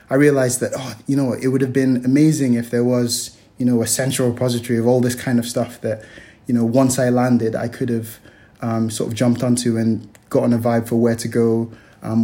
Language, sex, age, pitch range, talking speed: English, male, 20-39, 115-125 Hz, 235 wpm